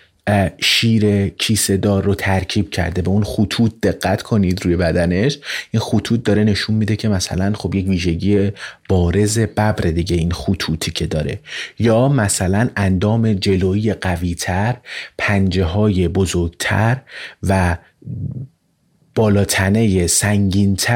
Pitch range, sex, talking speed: 90-110 Hz, male, 120 wpm